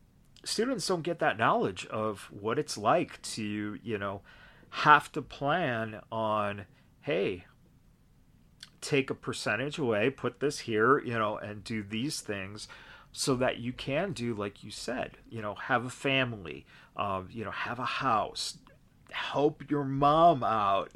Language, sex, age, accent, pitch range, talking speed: English, male, 40-59, American, 115-150 Hz, 150 wpm